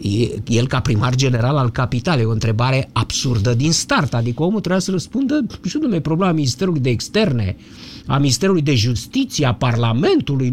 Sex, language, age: male, Romanian, 50-69